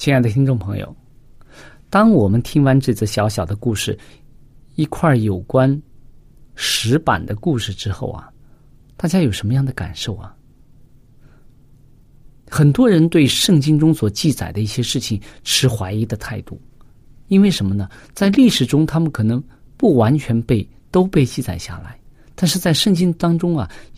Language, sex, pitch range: Chinese, male, 110-145 Hz